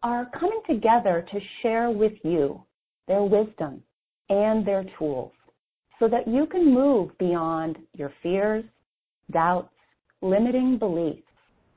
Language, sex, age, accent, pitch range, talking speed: English, female, 40-59, American, 175-235 Hz, 115 wpm